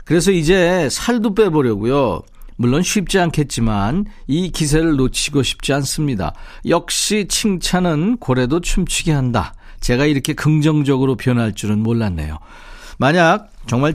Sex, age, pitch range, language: male, 50-69, 115-165 Hz, Korean